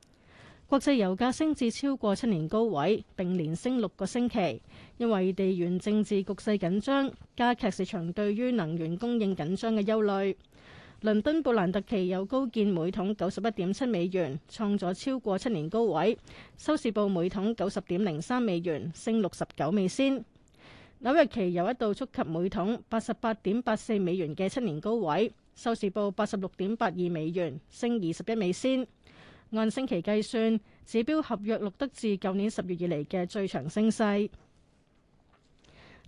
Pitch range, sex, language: 190-230 Hz, female, Chinese